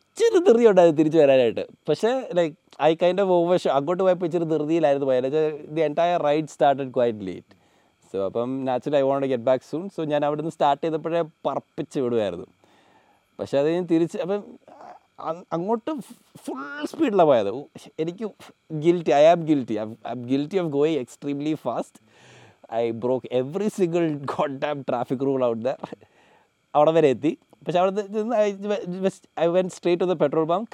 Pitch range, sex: 130-175 Hz, male